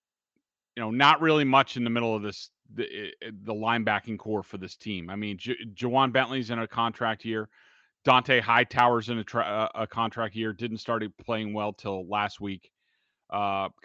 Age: 30-49